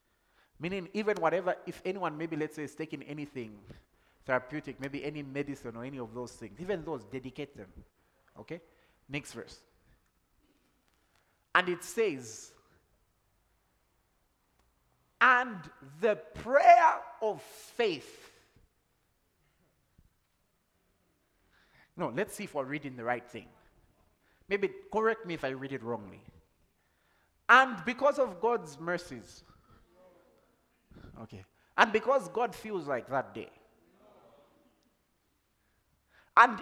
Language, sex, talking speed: English, male, 110 wpm